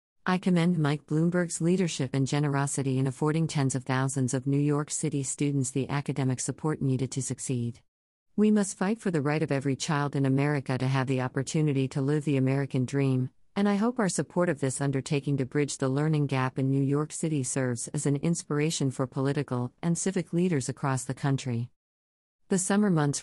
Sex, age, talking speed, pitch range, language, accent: female, 50-69, 195 wpm, 135-155 Hz, English, American